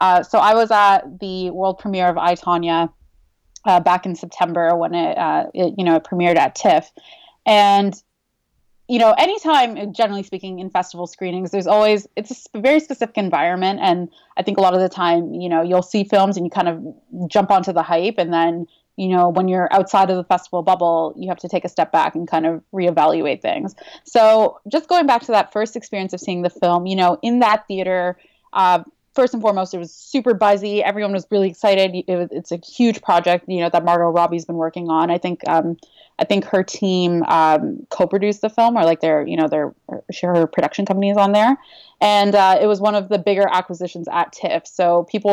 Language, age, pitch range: English, 20-39, 175-210 Hz